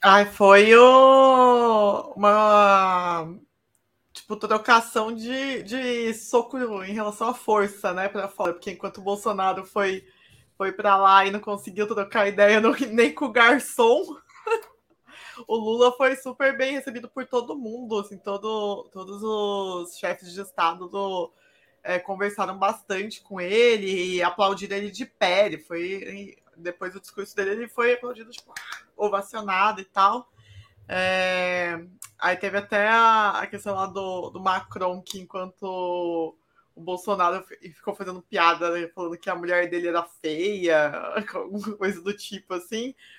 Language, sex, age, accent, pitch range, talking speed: Portuguese, female, 20-39, Brazilian, 185-225 Hz, 140 wpm